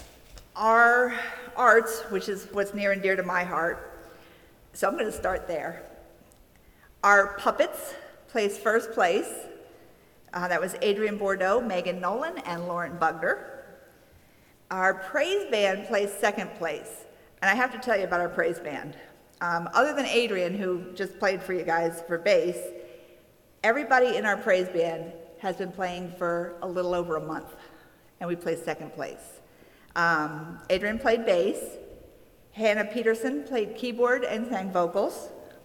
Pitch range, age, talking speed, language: 175-220 Hz, 50-69, 150 wpm, English